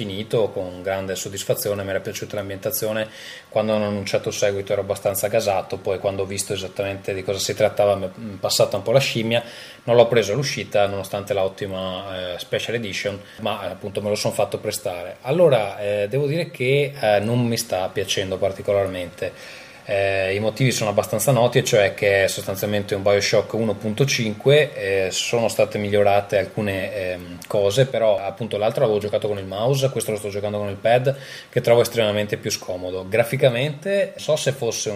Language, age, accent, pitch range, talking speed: Italian, 20-39, native, 100-115 Hz, 180 wpm